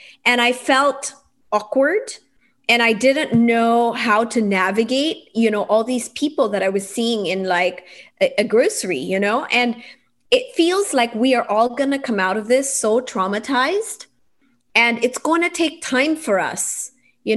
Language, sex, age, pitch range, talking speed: English, female, 30-49, 215-275 Hz, 175 wpm